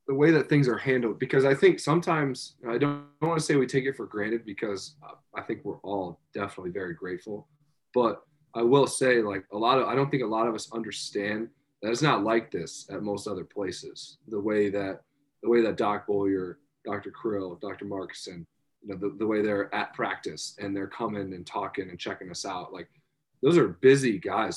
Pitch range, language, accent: 105-140 Hz, English, American